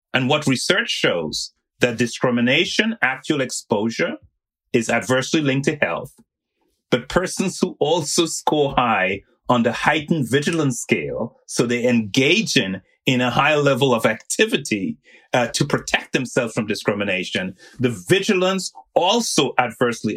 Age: 30-49